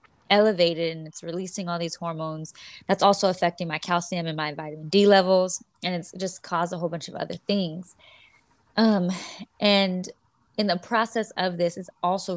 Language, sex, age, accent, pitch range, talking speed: English, female, 20-39, American, 170-200 Hz, 175 wpm